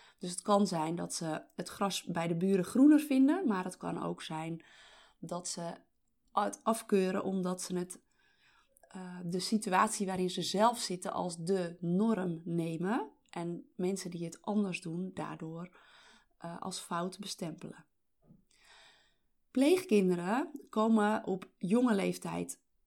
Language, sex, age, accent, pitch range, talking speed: Dutch, female, 30-49, Dutch, 180-230 Hz, 135 wpm